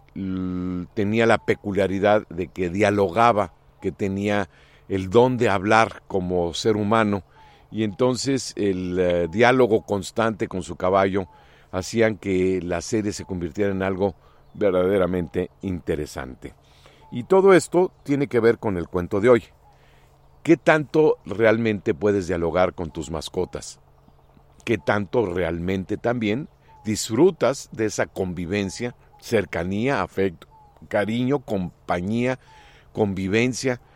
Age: 50-69